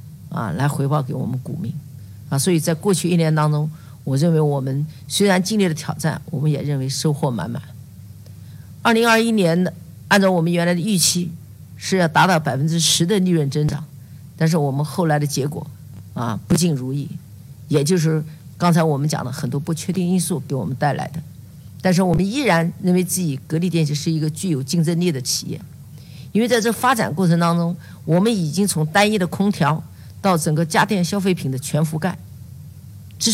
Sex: female